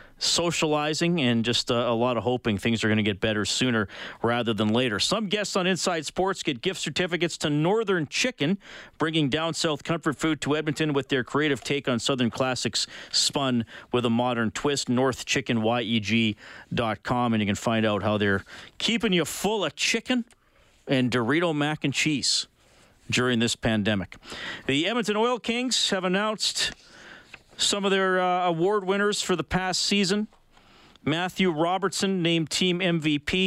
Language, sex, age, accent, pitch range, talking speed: English, male, 40-59, American, 125-185 Hz, 160 wpm